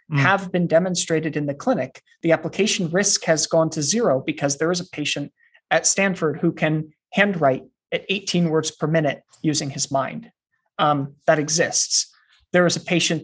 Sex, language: male, English